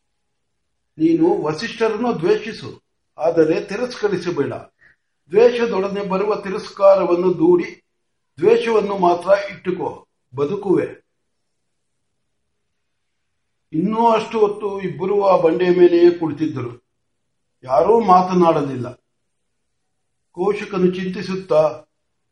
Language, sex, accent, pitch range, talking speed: Marathi, male, native, 165-215 Hz, 45 wpm